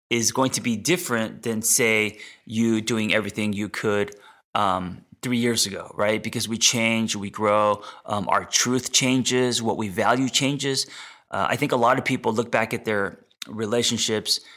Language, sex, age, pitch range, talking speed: English, male, 30-49, 105-125 Hz, 175 wpm